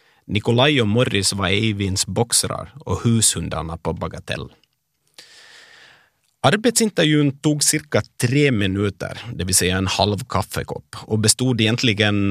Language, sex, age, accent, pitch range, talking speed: Swedish, male, 30-49, native, 95-135 Hz, 115 wpm